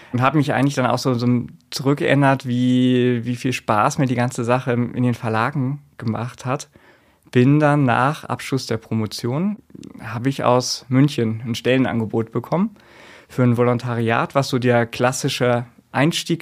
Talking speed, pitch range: 155 wpm, 115-130 Hz